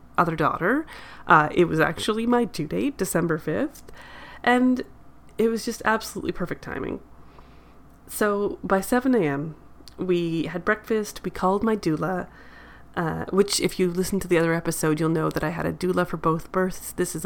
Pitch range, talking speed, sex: 160-195 Hz, 175 wpm, female